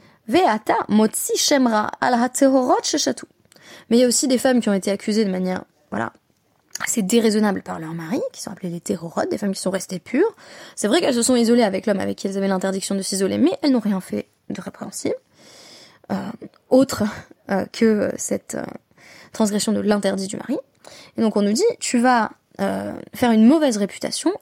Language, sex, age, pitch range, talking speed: French, female, 20-39, 195-255 Hz, 185 wpm